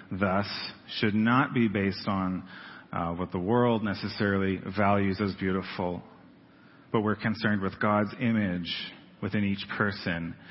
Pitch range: 95-115 Hz